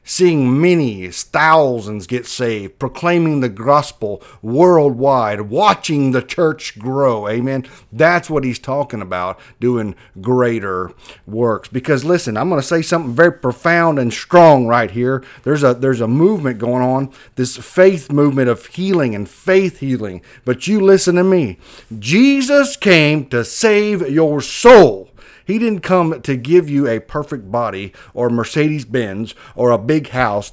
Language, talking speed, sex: English, 150 wpm, male